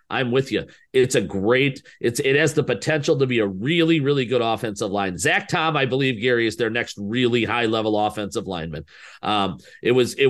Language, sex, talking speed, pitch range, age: English, male, 210 wpm, 110-130 Hz, 40-59